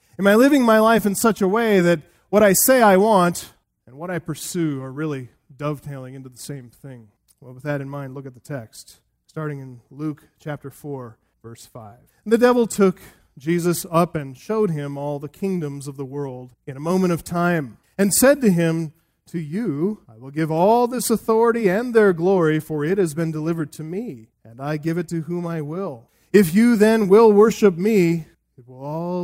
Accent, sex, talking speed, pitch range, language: American, male, 205 wpm, 135-195 Hz, English